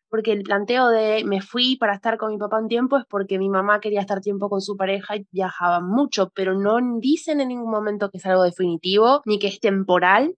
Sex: female